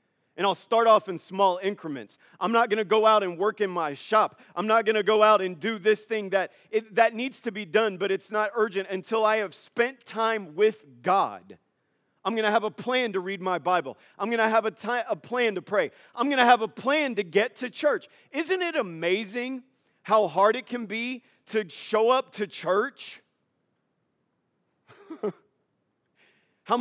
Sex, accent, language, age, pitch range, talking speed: male, American, English, 40-59, 210-250 Hz, 200 wpm